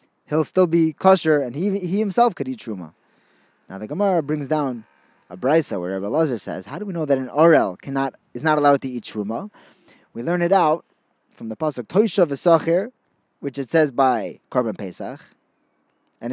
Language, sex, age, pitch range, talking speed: English, male, 20-39, 140-190 Hz, 190 wpm